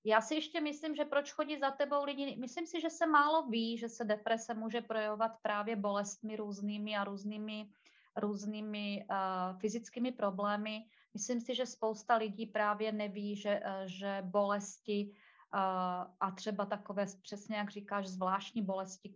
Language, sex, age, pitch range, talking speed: Czech, female, 30-49, 195-225 Hz, 155 wpm